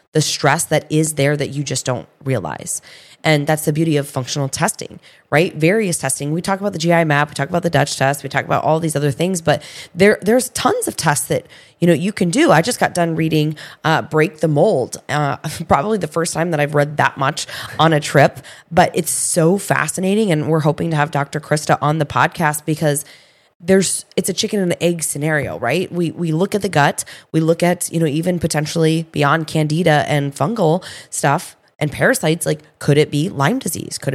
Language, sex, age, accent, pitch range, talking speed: English, female, 20-39, American, 145-170 Hz, 215 wpm